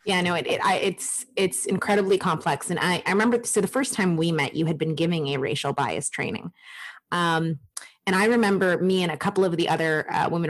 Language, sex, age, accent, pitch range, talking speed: English, female, 20-39, American, 170-225 Hz, 230 wpm